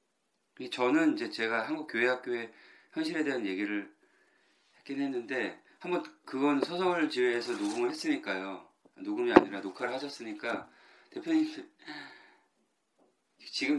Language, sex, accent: Korean, male, native